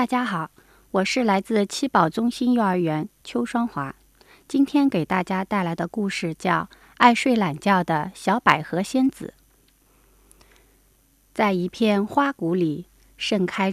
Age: 30-49